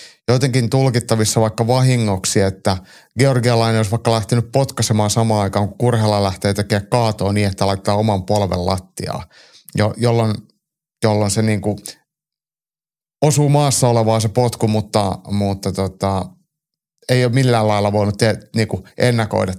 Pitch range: 100-120 Hz